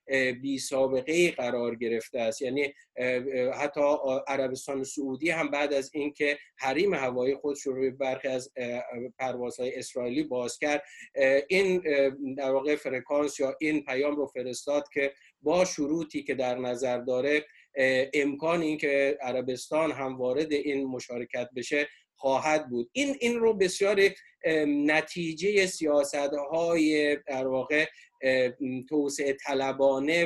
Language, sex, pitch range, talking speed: Persian, male, 130-155 Hz, 115 wpm